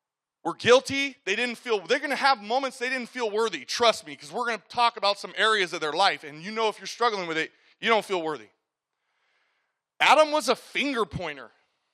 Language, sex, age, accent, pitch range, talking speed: English, male, 30-49, American, 200-260 Hz, 220 wpm